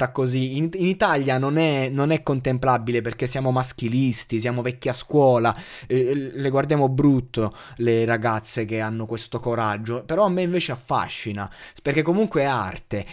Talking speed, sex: 155 wpm, male